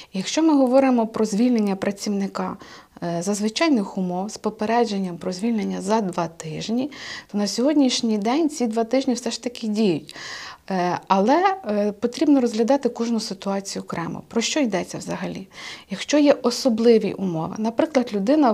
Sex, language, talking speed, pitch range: female, Ukrainian, 140 wpm, 195-245 Hz